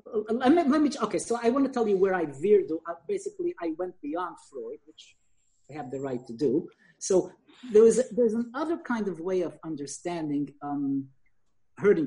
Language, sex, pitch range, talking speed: English, male, 165-250 Hz, 195 wpm